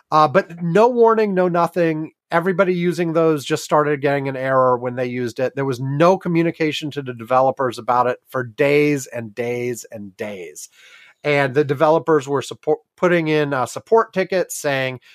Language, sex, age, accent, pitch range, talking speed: English, male, 30-49, American, 135-175 Hz, 175 wpm